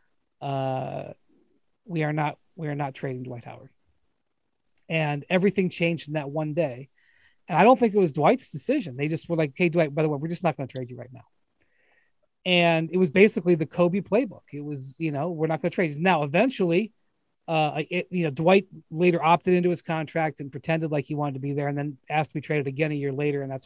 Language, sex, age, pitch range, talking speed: English, male, 30-49, 150-190 Hz, 230 wpm